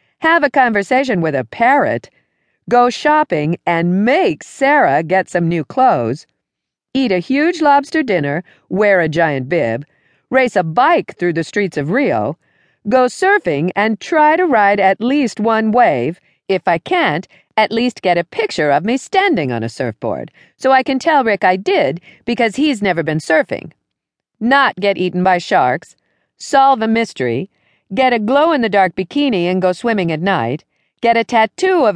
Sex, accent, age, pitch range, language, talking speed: female, American, 50-69, 170-260 Hz, English, 165 wpm